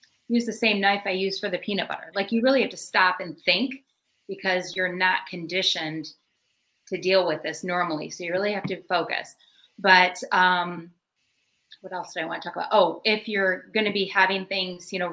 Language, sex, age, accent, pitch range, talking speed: English, female, 30-49, American, 170-200 Hz, 210 wpm